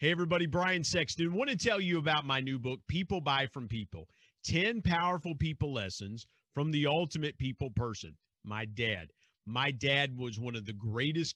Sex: male